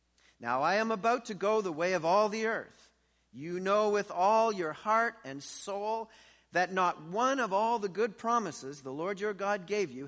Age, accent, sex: 50-69, American, male